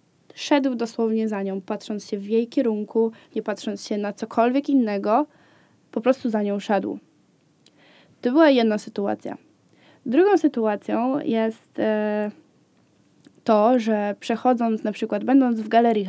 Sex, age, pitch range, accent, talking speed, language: female, 20-39, 215-280 Hz, native, 135 wpm, Polish